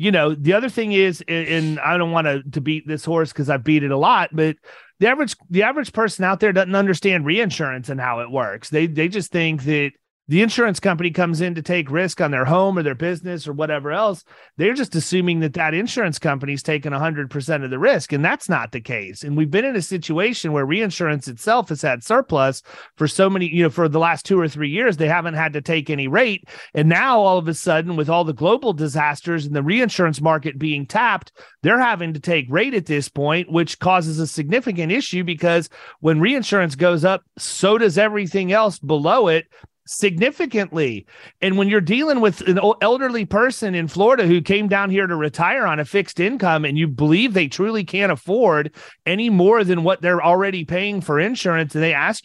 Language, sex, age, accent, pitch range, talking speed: English, male, 30-49, American, 155-195 Hz, 215 wpm